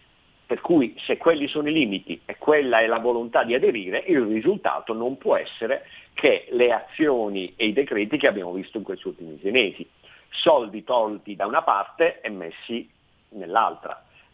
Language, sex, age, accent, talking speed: Italian, male, 50-69, native, 165 wpm